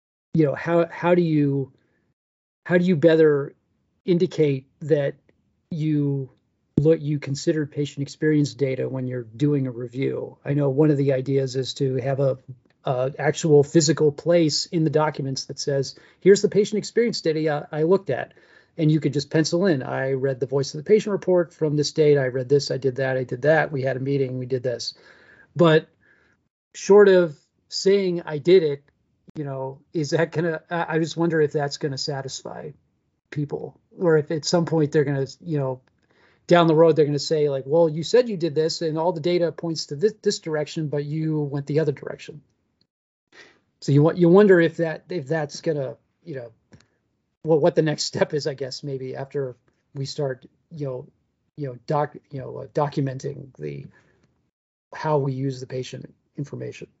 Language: English